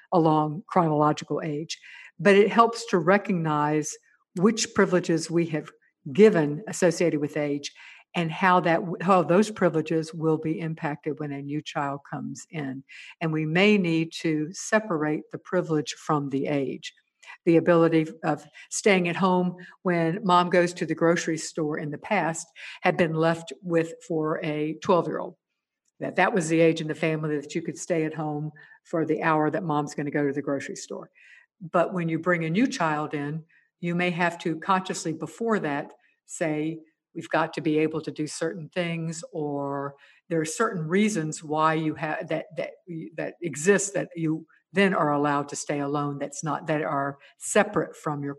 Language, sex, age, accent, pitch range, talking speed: English, female, 60-79, American, 150-175 Hz, 175 wpm